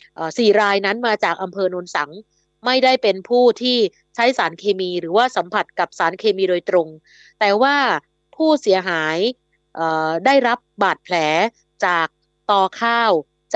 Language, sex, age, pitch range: Thai, female, 20-39, 175-230 Hz